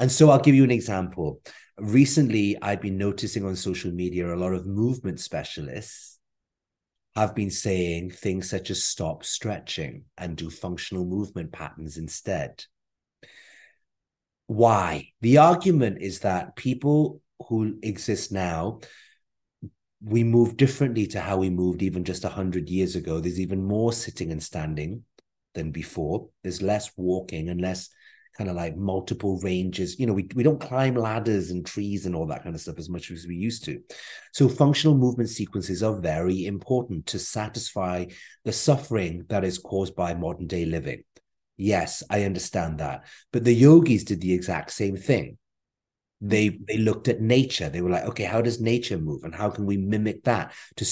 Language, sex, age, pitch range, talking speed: English, male, 30-49, 90-120 Hz, 170 wpm